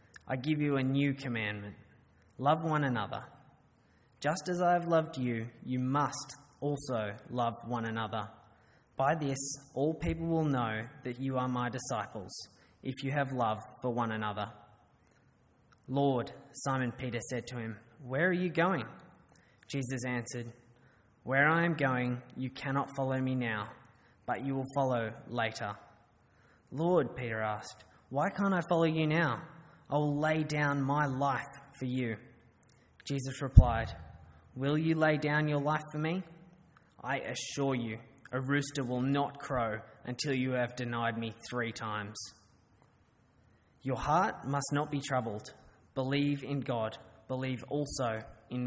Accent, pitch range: Australian, 115-140 Hz